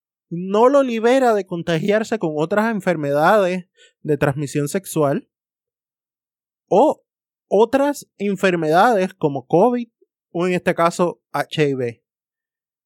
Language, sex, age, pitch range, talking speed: Spanish, male, 20-39, 160-230 Hz, 100 wpm